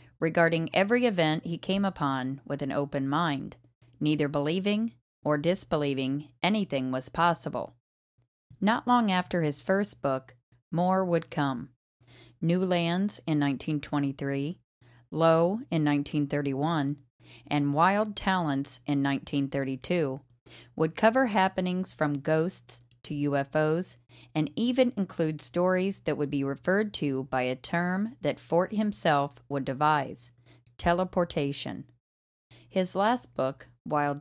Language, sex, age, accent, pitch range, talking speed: English, female, 40-59, American, 135-180 Hz, 115 wpm